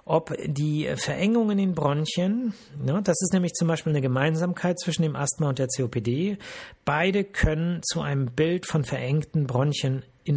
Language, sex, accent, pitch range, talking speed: German, male, German, 130-160 Hz, 170 wpm